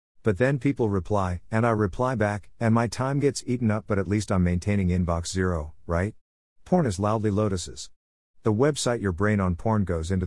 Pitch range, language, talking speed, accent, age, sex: 90-115 Hz, English, 200 wpm, American, 50-69, male